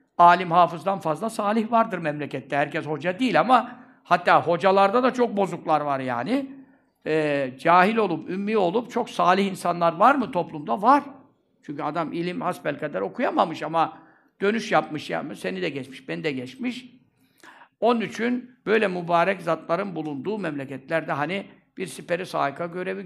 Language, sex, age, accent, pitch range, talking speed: Turkish, male, 60-79, native, 160-225 Hz, 145 wpm